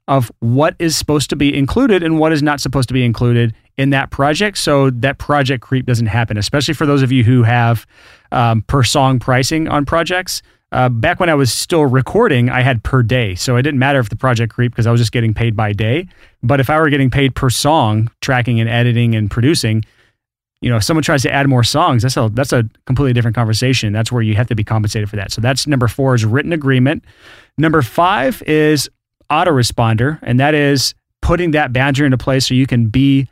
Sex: male